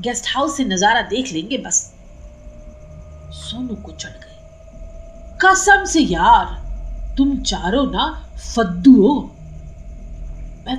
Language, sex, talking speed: Hindi, female, 110 wpm